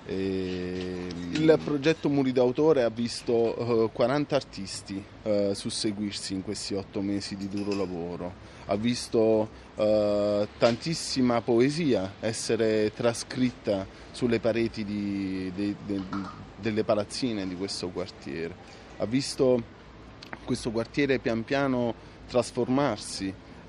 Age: 30-49